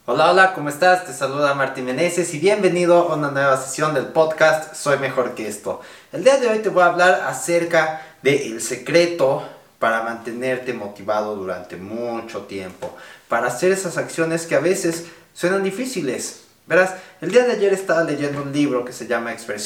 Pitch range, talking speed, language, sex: 125-175 Hz, 185 wpm, Spanish, male